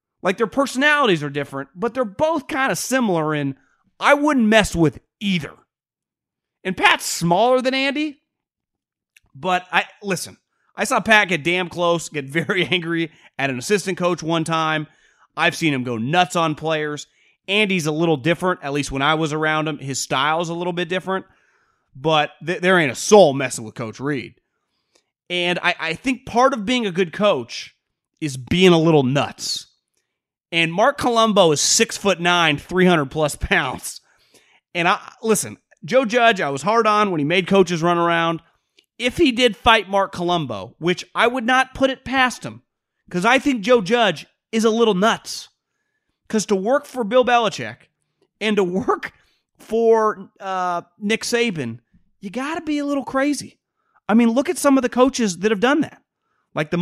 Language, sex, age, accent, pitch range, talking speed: English, male, 30-49, American, 160-230 Hz, 180 wpm